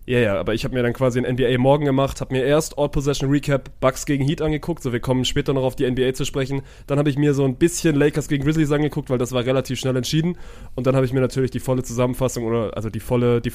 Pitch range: 125-150 Hz